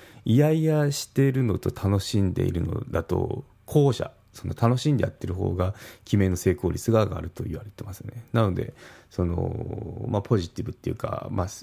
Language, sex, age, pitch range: Japanese, male, 30-49, 95-125 Hz